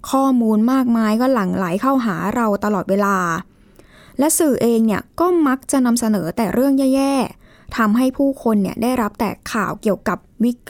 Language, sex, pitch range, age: Thai, female, 195-245 Hz, 20-39